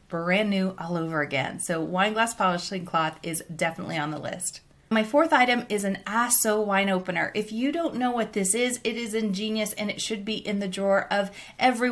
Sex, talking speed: female, 210 wpm